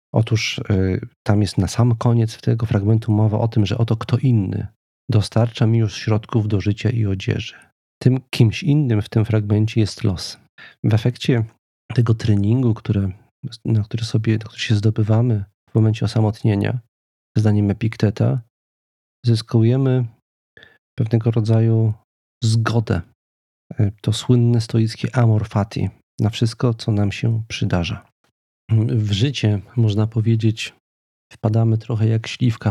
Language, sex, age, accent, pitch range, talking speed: Polish, male, 40-59, native, 105-115 Hz, 125 wpm